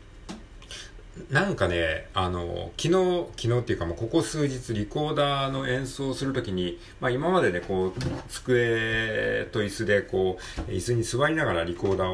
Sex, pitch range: male, 95-150 Hz